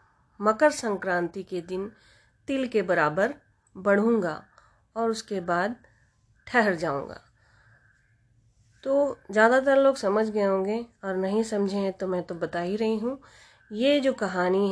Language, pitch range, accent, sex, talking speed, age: Hindi, 180-225 Hz, native, female, 135 wpm, 20-39